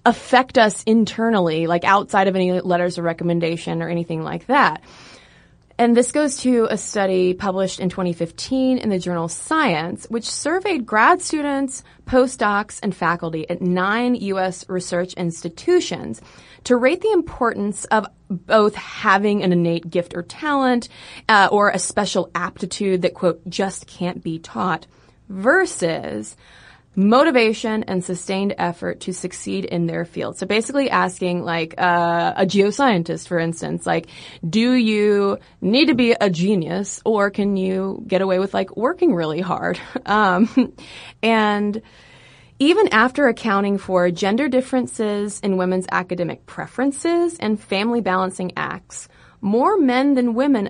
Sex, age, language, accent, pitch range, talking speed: female, 20-39, English, American, 180-235 Hz, 140 wpm